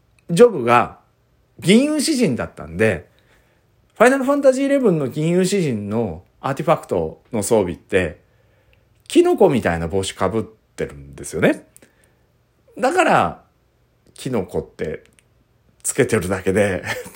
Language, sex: Japanese, male